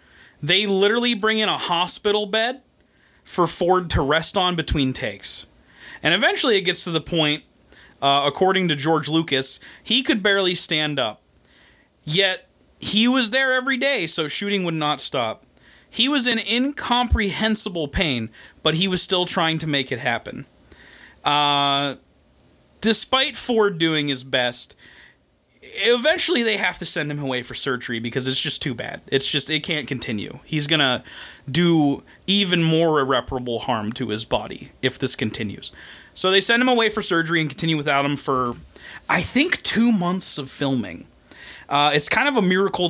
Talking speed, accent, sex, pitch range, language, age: 165 wpm, American, male, 140-205 Hz, English, 20-39